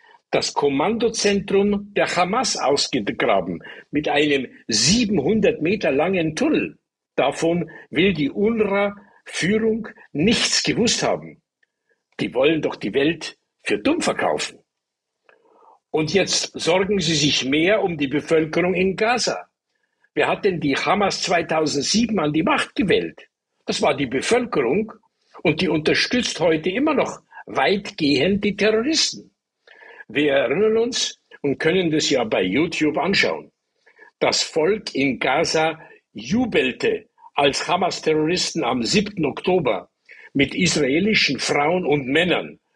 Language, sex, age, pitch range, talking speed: German, male, 60-79, 165-245 Hz, 120 wpm